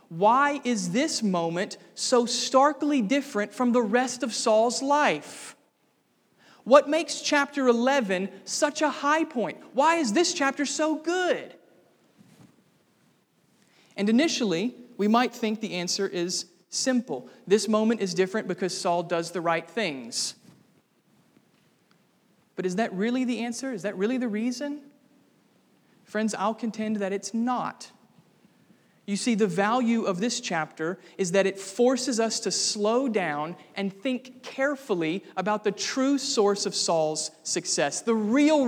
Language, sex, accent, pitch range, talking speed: English, male, American, 195-255 Hz, 140 wpm